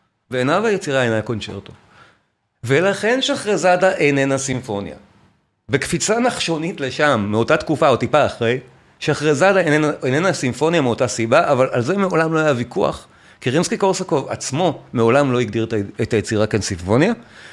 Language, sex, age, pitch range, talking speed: Hebrew, male, 40-59, 120-180 Hz, 135 wpm